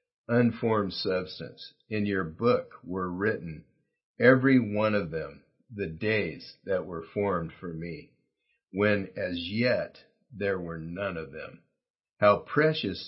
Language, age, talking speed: English, 50-69, 130 wpm